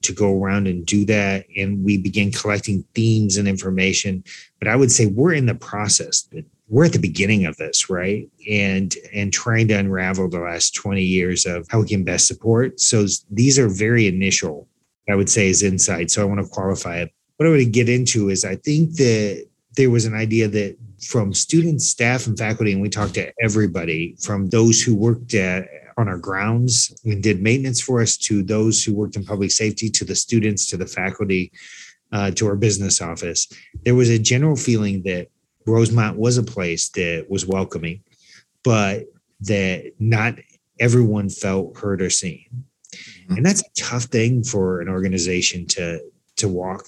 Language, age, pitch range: English, 30-49, 95-115 Hz